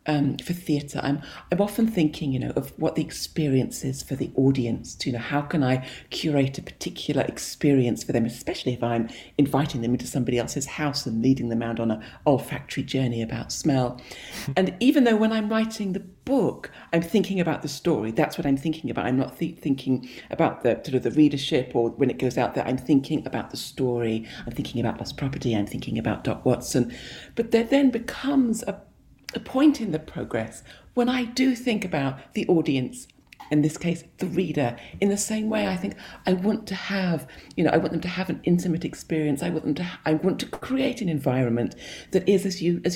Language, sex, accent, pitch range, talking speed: English, female, British, 130-185 Hz, 215 wpm